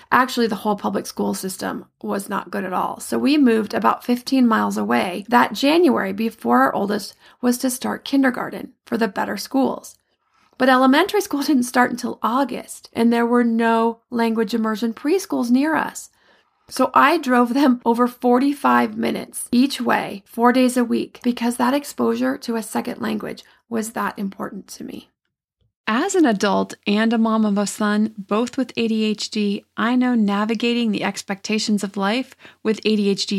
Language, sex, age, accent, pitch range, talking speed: English, female, 30-49, American, 210-255 Hz, 165 wpm